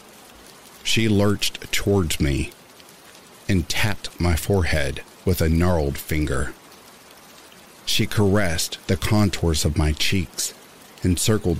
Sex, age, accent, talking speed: male, 50-69, American, 105 wpm